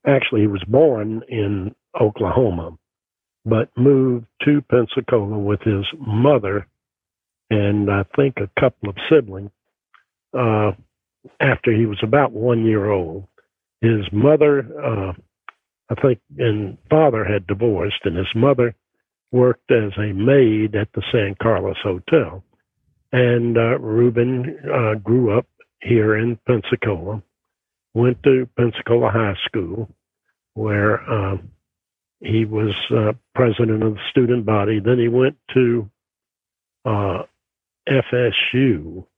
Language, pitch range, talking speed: English, 105-125 Hz, 120 wpm